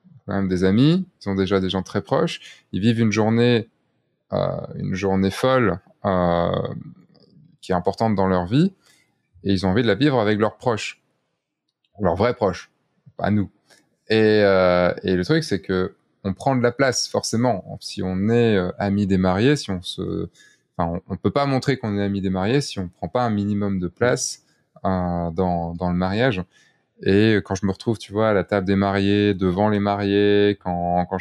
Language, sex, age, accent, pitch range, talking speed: French, male, 20-39, French, 95-110 Hz, 200 wpm